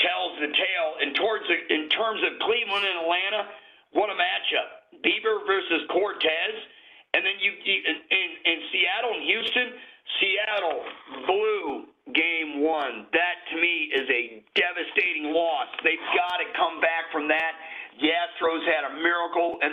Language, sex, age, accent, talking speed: English, male, 50-69, American, 155 wpm